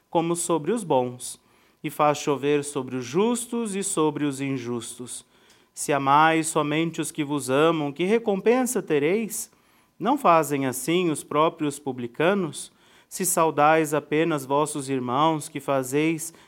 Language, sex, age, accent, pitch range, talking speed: Portuguese, male, 40-59, Brazilian, 145-185 Hz, 135 wpm